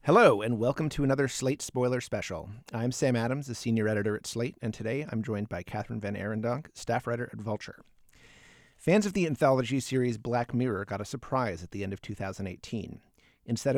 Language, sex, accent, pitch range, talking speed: English, male, American, 105-135 Hz, 190 wpm